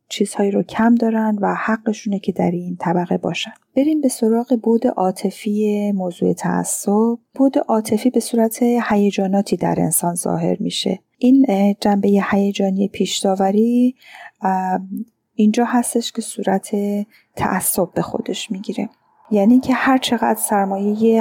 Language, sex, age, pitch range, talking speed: Persian, female, 30-49, 195-230 Hz, 130 wpm